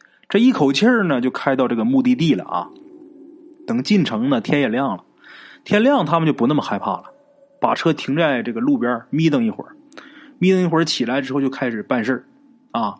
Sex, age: male, 20-39